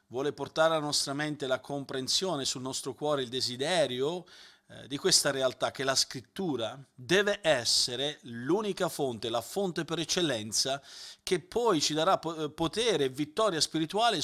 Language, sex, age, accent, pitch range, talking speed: Italian, male, 40-59, native, 125-150 Hz, 150 wpm